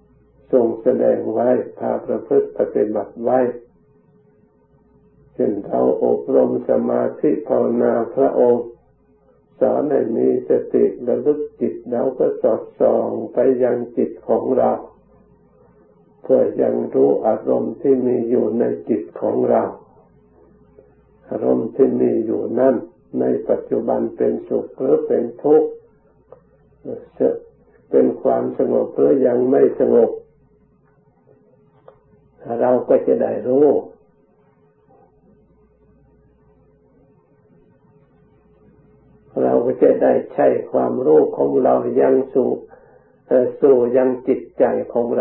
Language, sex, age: Thai, male, 60-79